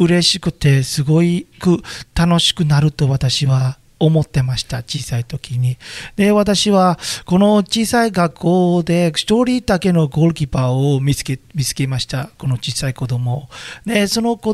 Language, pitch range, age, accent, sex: Japanese, 155-205 Hz, 40-59, native, male